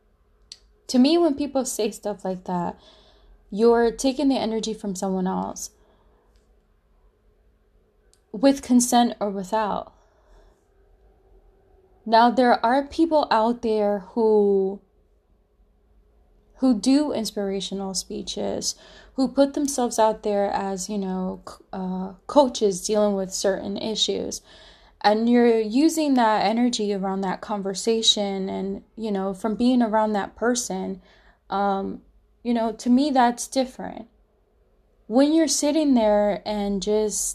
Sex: female